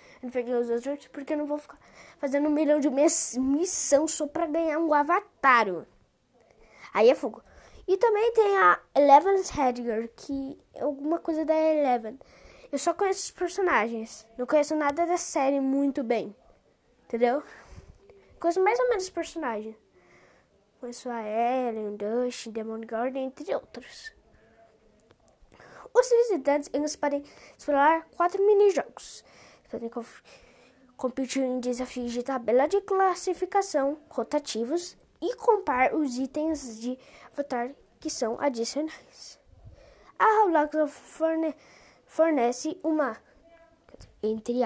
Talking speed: 120 wpm